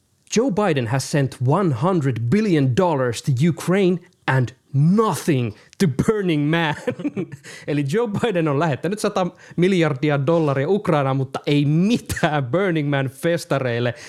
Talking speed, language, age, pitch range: 125 wpm, Finnish, 20-39, 130-170 Hz